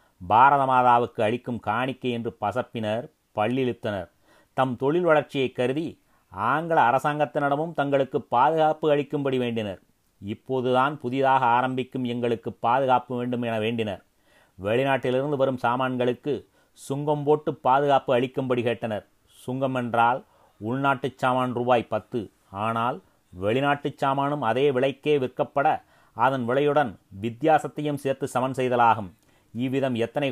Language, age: Tamil, 30-49